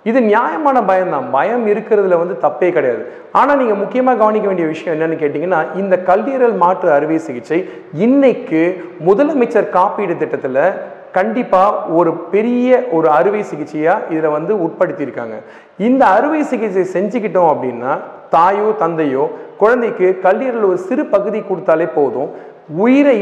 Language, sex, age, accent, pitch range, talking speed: Tamil, male, 40-59, native, 165-240 Hz, 130 wpm